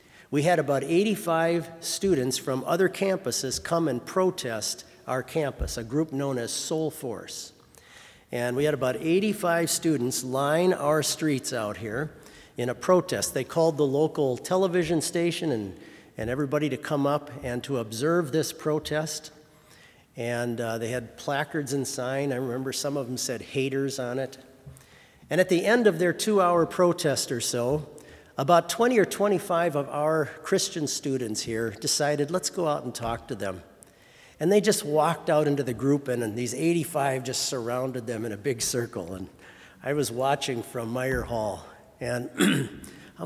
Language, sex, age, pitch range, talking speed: English, male, 50-69, 125-165 Hz, 170 wpm